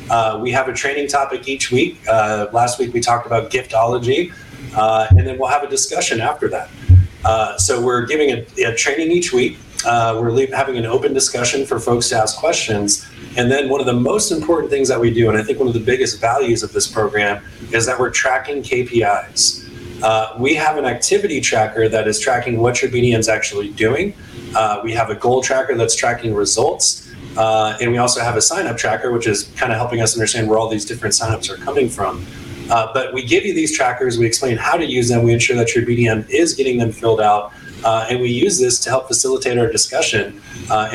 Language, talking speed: English, 220 wpm